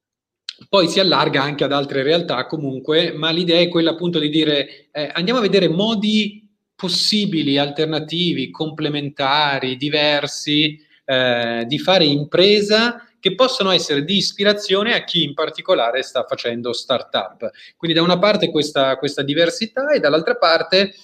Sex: male